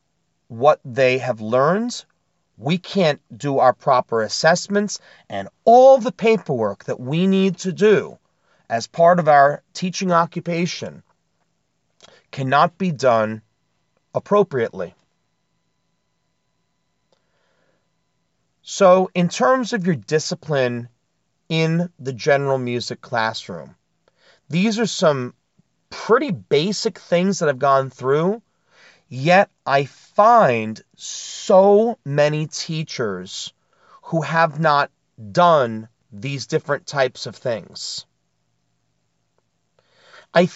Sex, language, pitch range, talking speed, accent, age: male, English, 135-190 Hz, 100 wpm, American, 40-59